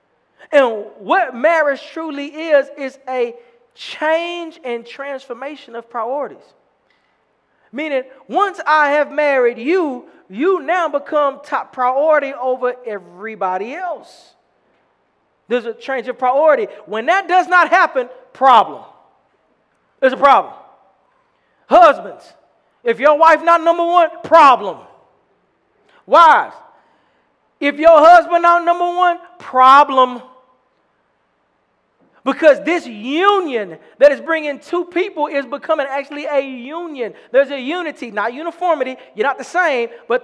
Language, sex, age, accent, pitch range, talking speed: English, male, 40-59, American, 250-335 Hz, 120 wpm